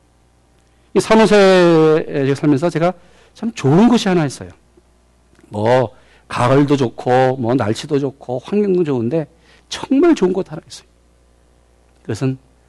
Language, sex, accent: Korean, male, native